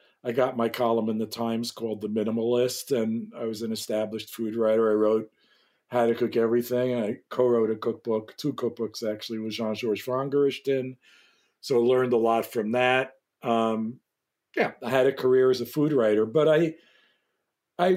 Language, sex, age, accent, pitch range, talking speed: English, male, 50-69, American, 110-130 Hz, 185 wpm